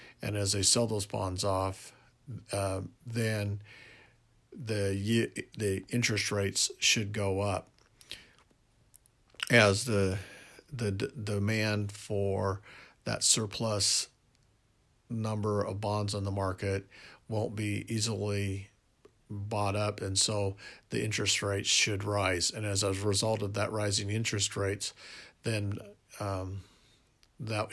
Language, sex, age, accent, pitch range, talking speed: English, male, 50-69, American, 100-115 Hz, 115 wpm